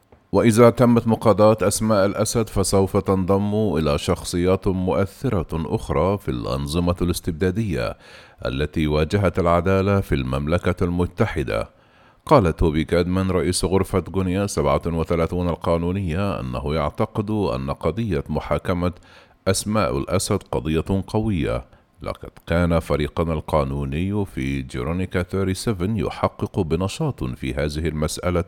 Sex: male